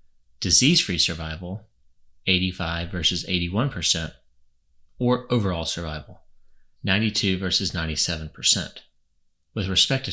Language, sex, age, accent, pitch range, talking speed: English, male, 30-49, American, 80-100 Hz, 85 wpm